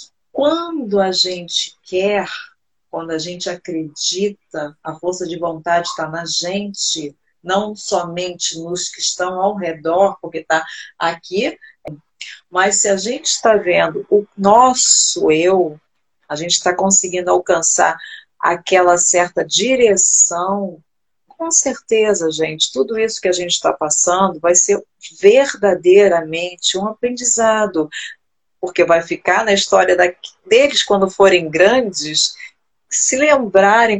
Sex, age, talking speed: female, 40-59, 120 wpm